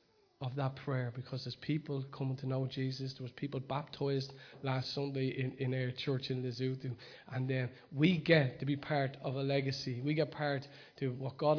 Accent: Irish